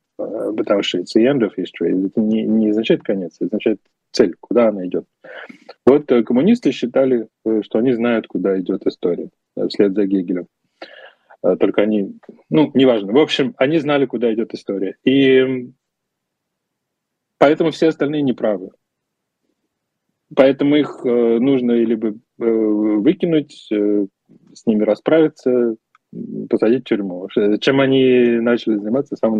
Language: Russian